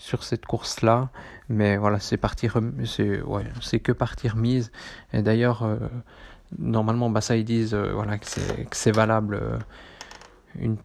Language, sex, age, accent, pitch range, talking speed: French, male, 20-39, French, 110-120 Hz, 170 wpm